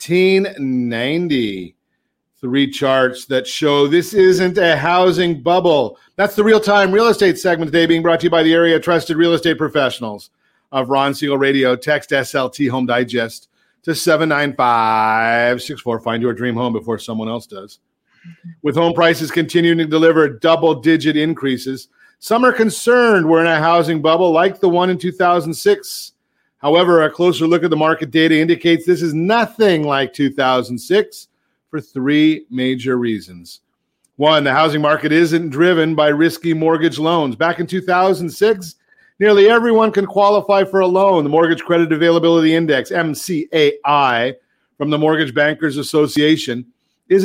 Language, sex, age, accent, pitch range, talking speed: English, male, 40-59, American, 140-180 Hz, 150 wpm